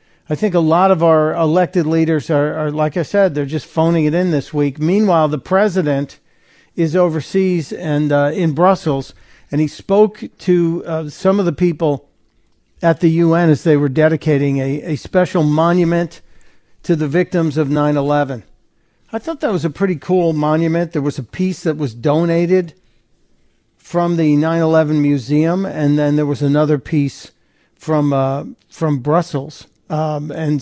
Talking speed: 165 wpm